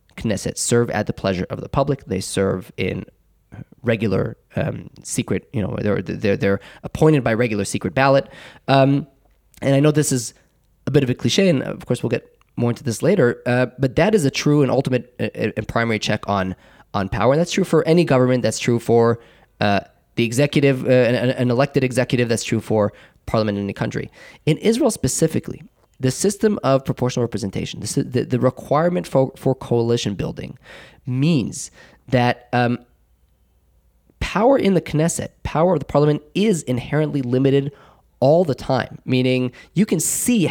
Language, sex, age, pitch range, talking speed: English, male, 20-39, 115-150 Hz, 175 wpm